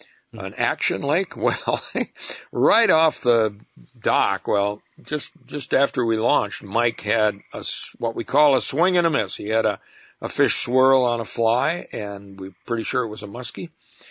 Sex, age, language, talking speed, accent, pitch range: male, 60-79, English, 180 wpm, American, 105-130 Hz